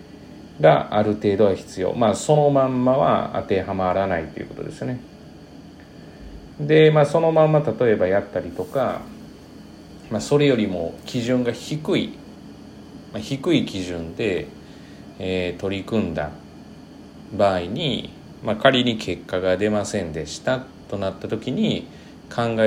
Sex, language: male, Japanese